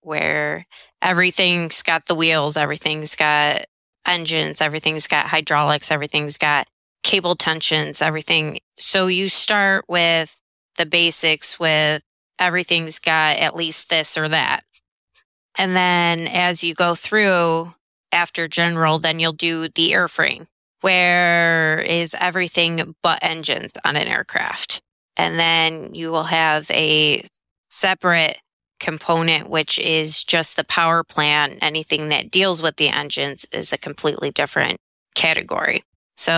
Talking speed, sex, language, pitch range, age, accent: 125 wpm, female, English, 155-170 Hz, 20-39, American